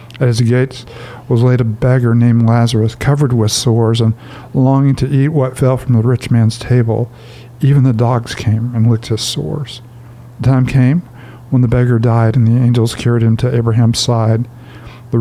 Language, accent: English, American